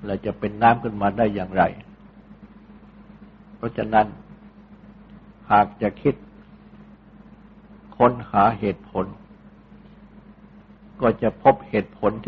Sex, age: male, 60-79